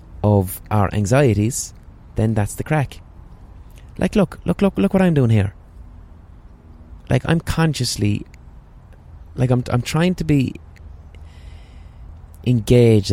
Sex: male